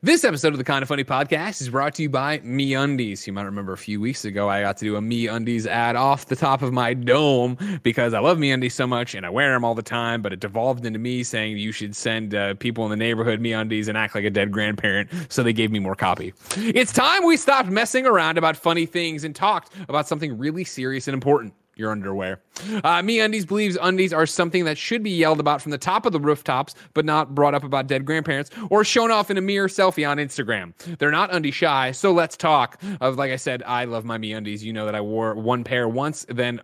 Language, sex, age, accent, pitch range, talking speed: English, male, 30-49, American, 115-165 Hz, 250 wpm